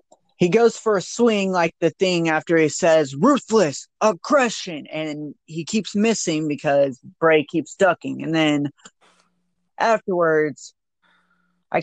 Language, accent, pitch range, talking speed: English, American, 150-185 Hz, 125 wpm